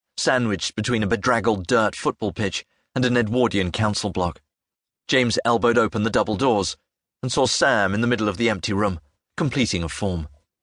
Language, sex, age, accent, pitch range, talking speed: English, male, 40-59, British, 95-130 Hz, 175 wpm